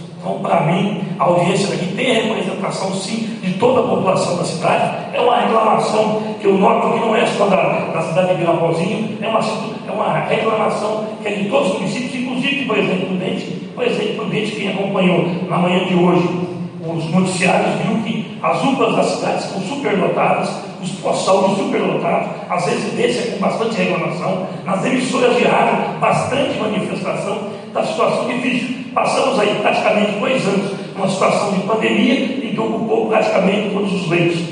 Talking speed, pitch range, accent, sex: 175 wpm, 185-225 Hz, Brazilian, male